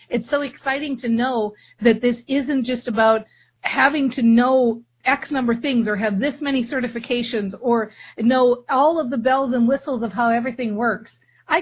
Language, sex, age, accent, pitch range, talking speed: English, female, 50-69, American, 215-280 Hz, 180 wpm